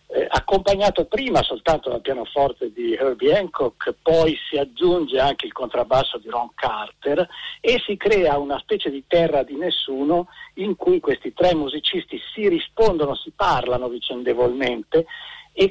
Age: 50-69